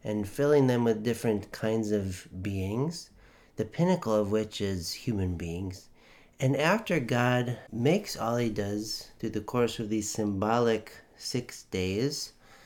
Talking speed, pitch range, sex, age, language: 140 wpm, 105-135 Hz, male, 40-59, English